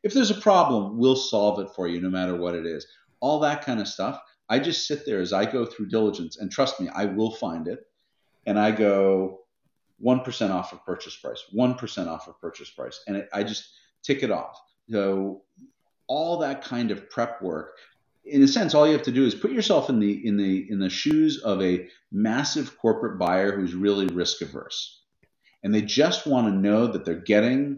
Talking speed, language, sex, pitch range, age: 205 wpm, English, male, 95-140 Hz, 40-59